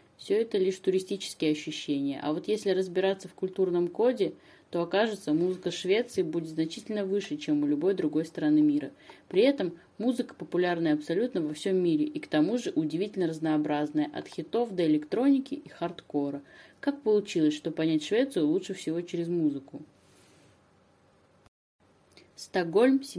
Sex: female